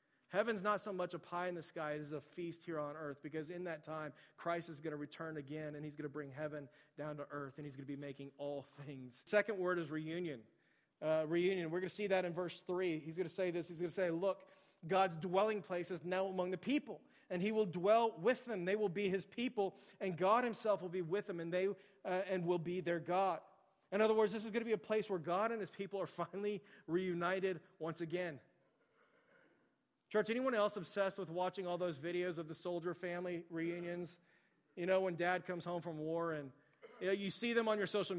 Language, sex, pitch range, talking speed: English, male, 160-190 Hz, 235 wpm